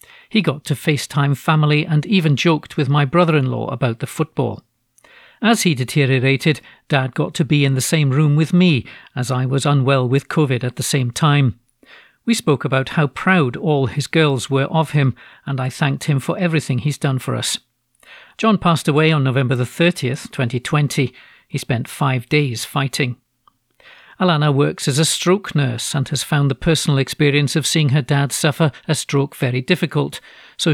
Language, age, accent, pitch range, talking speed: English, 50-69, British, 135-160 Hz, 180 wpm